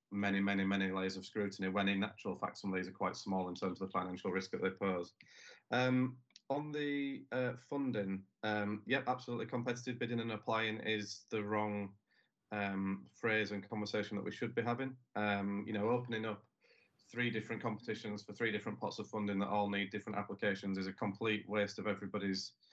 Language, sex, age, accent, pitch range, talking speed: English, male, 30-49, British, 100-115 Hz, 195 wpm